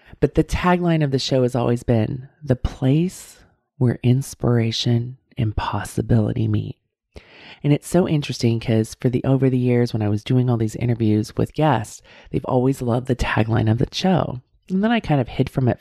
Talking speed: 195 wpm